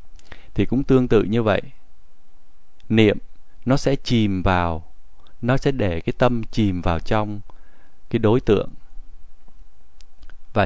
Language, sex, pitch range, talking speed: Vietnamese, male, 90-120 Hz, 130 wpm